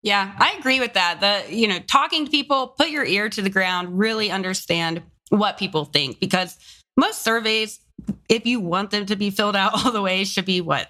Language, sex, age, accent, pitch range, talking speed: English, female, 20-39, American, 170-215 Hz, 215 wpm